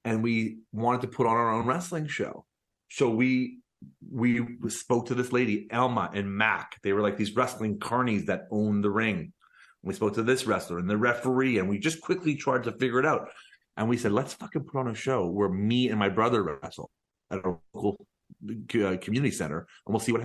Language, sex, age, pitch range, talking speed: English, male, 40-59, 105-135 Hz, 210 wpm